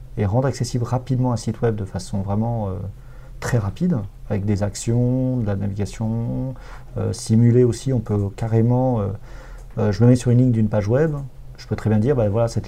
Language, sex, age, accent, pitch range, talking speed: French, male, 40-59, French, 105-125 Hz, 210 wpm